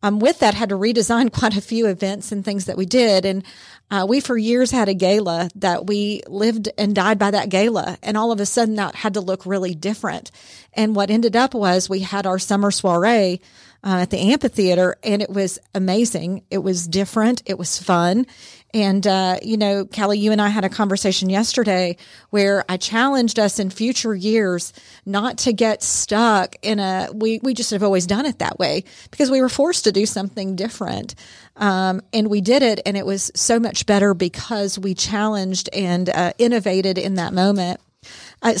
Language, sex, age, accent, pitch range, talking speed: English, female, 40-59, American, 190-220 Hz, 200 wpm